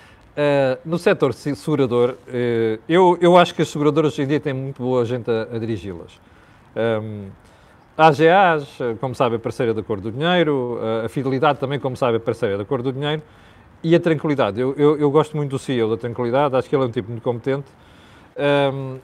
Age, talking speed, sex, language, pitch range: 40-59, 205 wpm, male, Portuguese, 120-155 Hz